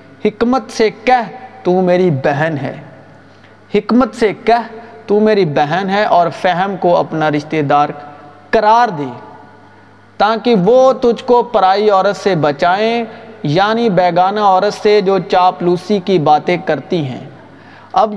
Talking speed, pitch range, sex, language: 140 wpm, 175-225 Hz, male, Urdu